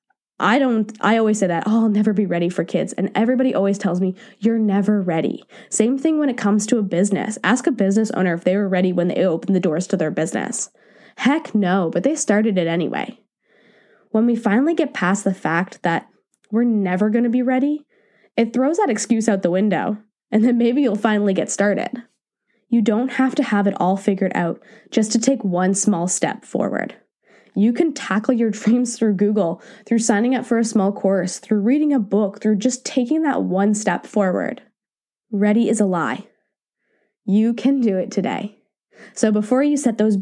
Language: English